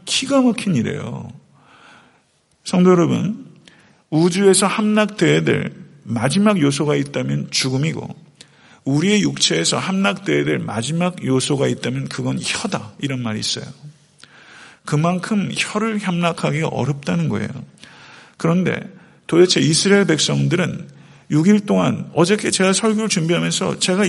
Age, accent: 50-69, native